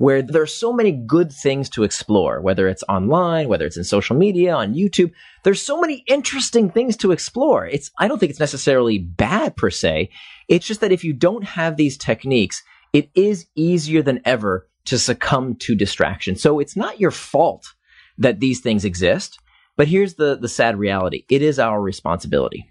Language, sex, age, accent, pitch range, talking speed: English, male, 30-49, American, 110-175 Hz, 190 wpm